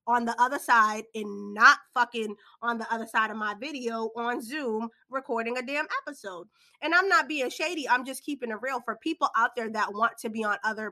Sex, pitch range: female, 215-270 Hz